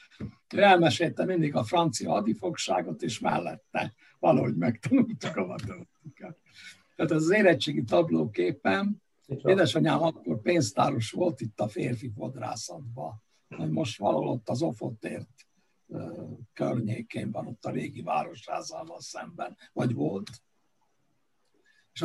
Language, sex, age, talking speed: Hungarian, male, 60-79, 105 wpm